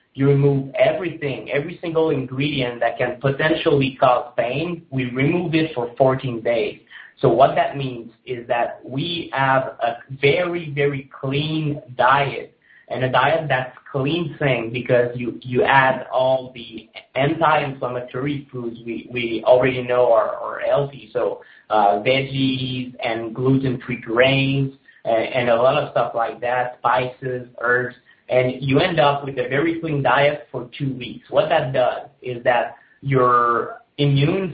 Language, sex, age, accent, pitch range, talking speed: English, male, 30-49, American, 125-145 Hz, 150 wpm